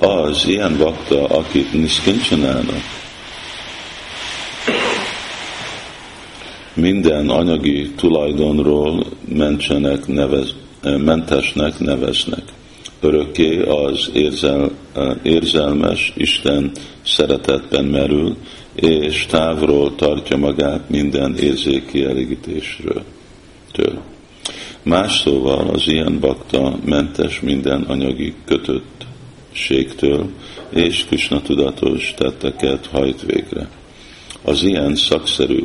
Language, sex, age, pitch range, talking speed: Hungarian, male, 50-69, 70-75 Hz, 70 wpm